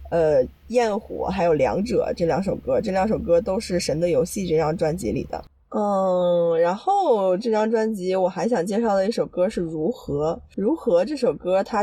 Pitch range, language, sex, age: 175-235 Hz, Chinese, female, 20-39